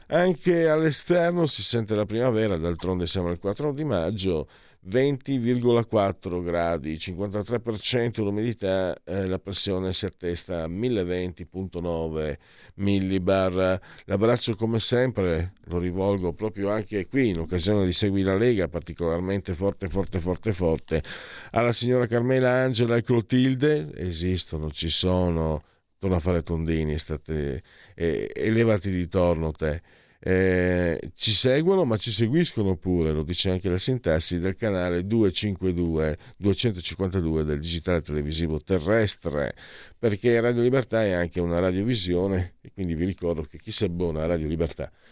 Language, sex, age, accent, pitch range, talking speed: Italian, male, 50-69, native, 85-110 Hz, 130 wpm